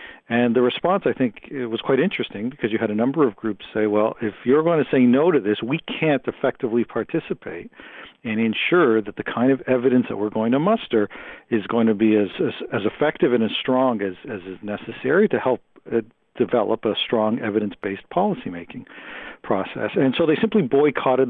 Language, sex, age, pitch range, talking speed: English, male, 50-69, 110-155 Hz, 200 wpm